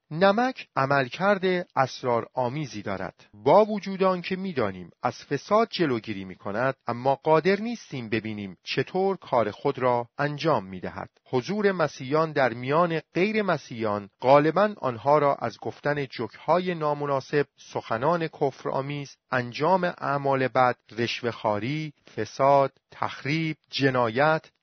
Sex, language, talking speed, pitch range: male, Persian, 110 wpm, 125-170 Hz